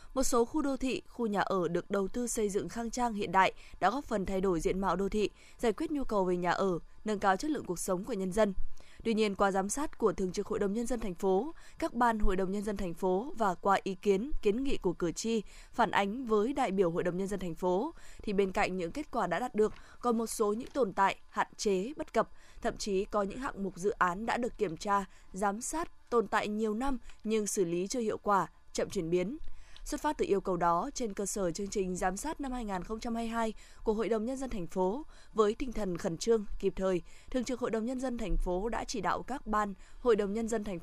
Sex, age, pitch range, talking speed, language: female, 20-39, 190-235 Hz, 260 wpm, Vietnamese